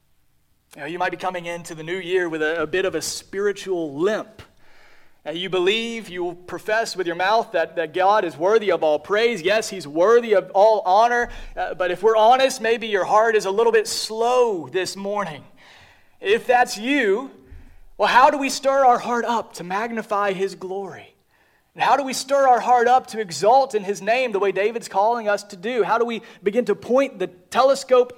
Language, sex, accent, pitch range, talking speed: English, male, American, 185-240 Hz, 205 wpm